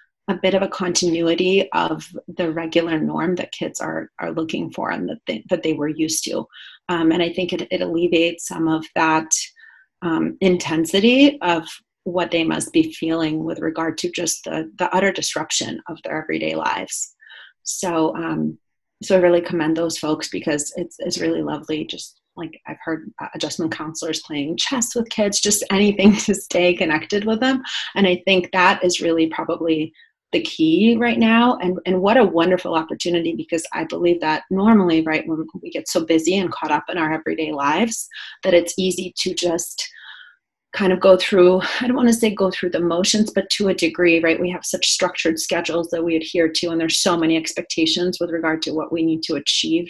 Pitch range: 160-190 Hz